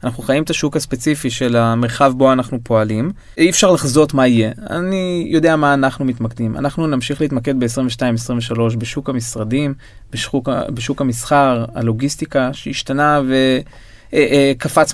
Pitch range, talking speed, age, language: 125-165 Hz, 130 wpm, 20-39, Hebrew